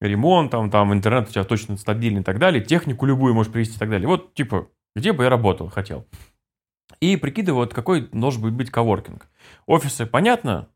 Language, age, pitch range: Russian, 20-39, 105-130 Hz